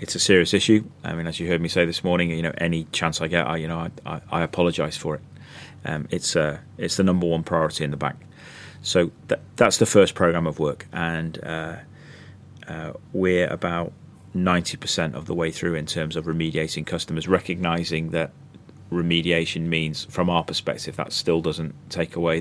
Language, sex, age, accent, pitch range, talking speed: English, male, 30-49, British, 80-95 Hz, 200 wpm